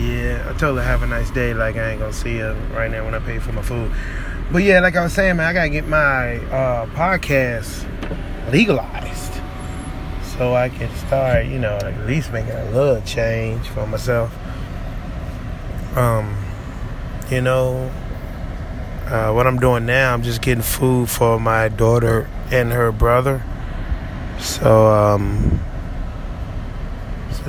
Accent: American